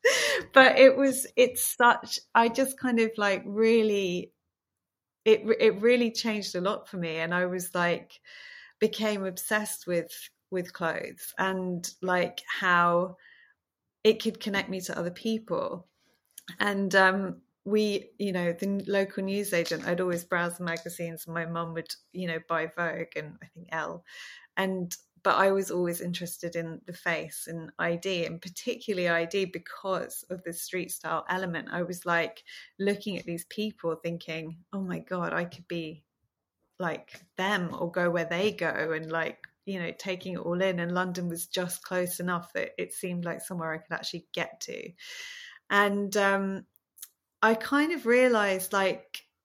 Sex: female